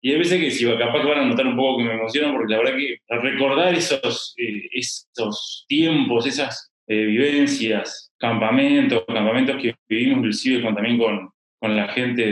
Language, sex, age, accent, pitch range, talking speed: Spanish, male, 20-39, Argentinian, 120-160 Hz, 190 wpm